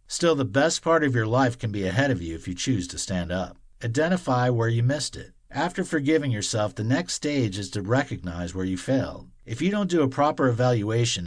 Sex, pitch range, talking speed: male, 95-140 Hz, 225 wpm